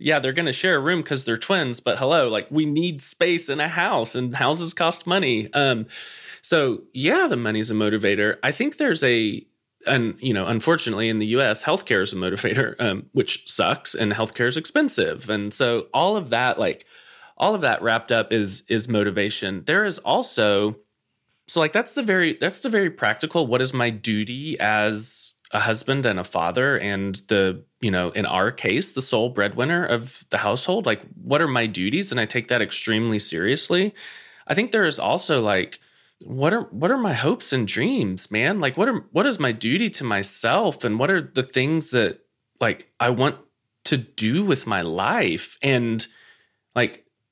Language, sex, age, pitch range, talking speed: English, male, 20-39, 110-170 Hz, 190 wpm